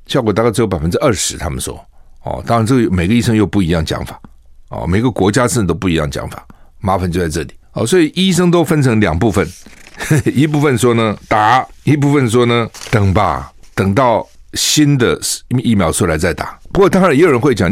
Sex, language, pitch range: male, Chinese, 90-135 Hz